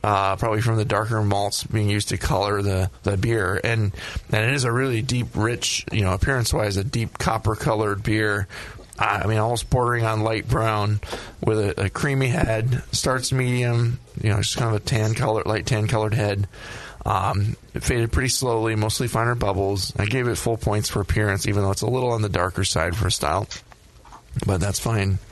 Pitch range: 100-120 Hz